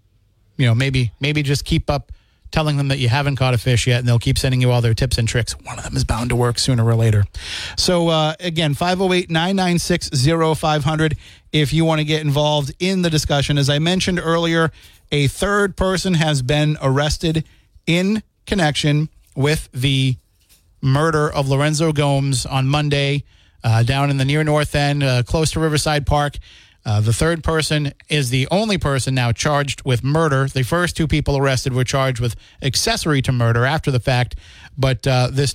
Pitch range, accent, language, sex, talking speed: 125-155 Hz, American, English, male, 185 wpm